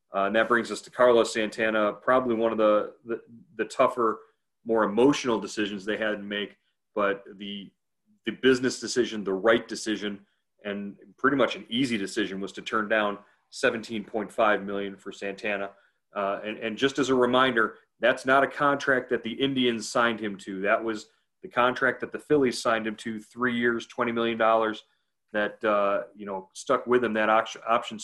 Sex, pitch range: male, 100-115 Hz